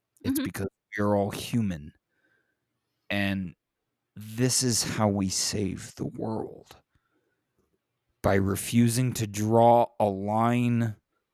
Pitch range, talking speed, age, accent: 100-120 Hz, 100 wpm, 30-49, American